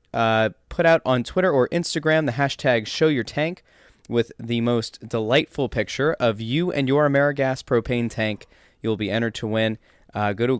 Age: 20-39